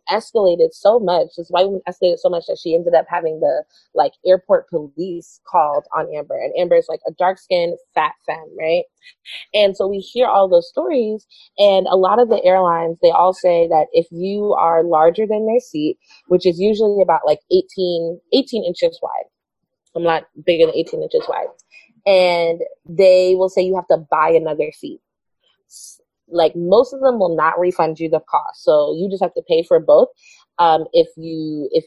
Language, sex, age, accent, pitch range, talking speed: English, female, 20-39, American, 170-250 Hz, 195 wpm